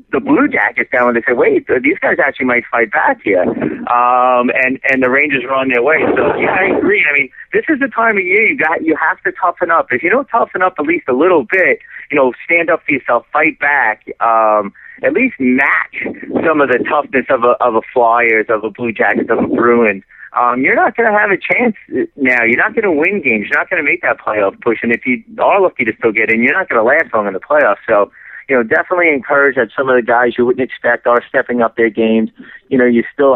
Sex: male